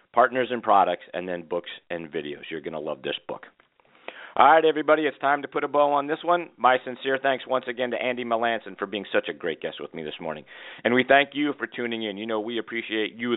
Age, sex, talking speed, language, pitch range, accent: 40-59, male, 250 wpm, English, 100-130 Hz, American